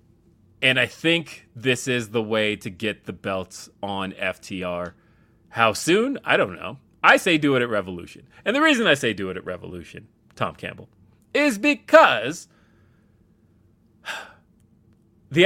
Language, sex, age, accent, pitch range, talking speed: English, male, 30-49, American, 100-125 Hz, 150 wpm